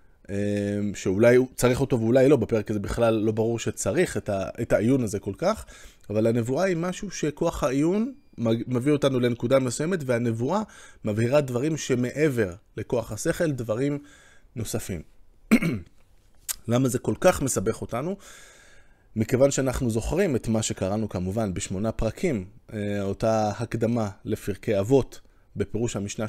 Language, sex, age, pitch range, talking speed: Hebrew, male, 20-39, 110-140 Hz, 130 wpm